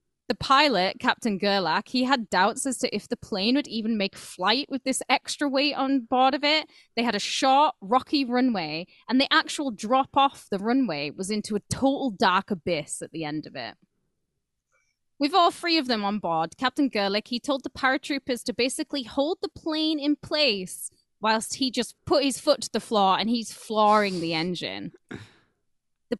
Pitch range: 195-270 Hz